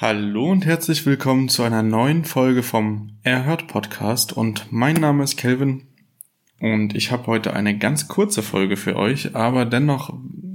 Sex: male